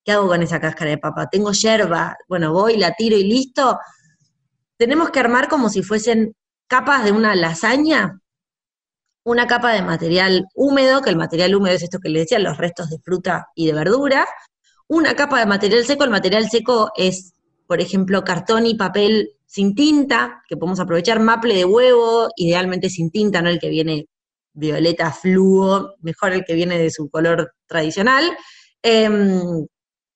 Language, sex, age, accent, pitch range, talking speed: Spanish, female, 20-39, Argentinian, 170-230 Hz, 170 wpm